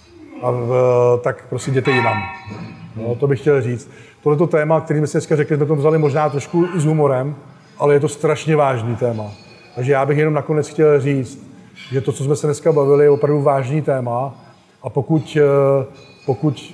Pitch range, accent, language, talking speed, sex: 130-145 Hz, native, Czech, 190 wpm, male